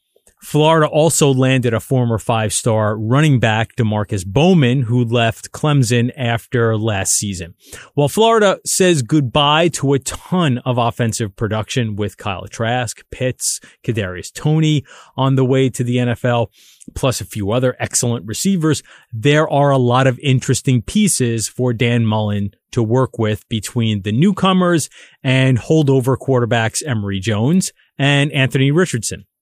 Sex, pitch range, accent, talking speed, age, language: male, 115-145 Hz, American, 140 wpm, 30-49, English